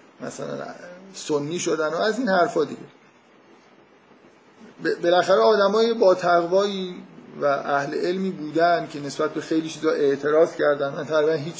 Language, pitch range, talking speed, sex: Persian, 150-190 Hz, 140 wpm, male